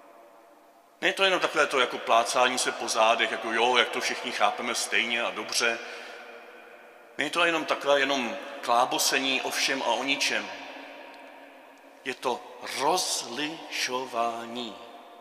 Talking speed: 140 wpm